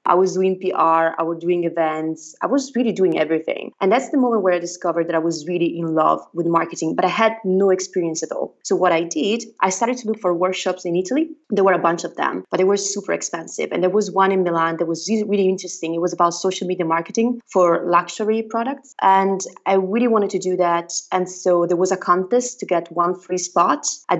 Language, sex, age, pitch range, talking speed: English, female, 20-39, 170-200 Hz, 240 wpm